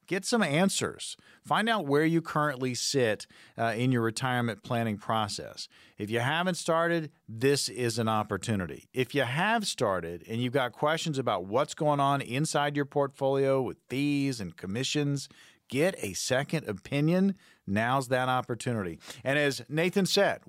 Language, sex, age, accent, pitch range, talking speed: English, male, 50-69, American, 120-155 Hz, 155 wpm